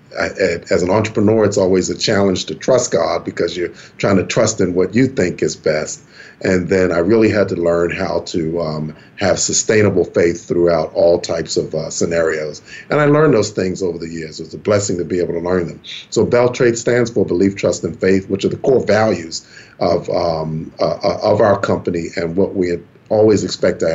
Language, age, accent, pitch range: English, 40-59, American, 85-105 Hz